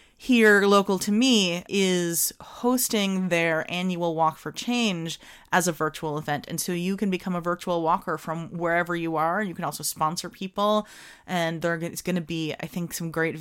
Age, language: 30-49, English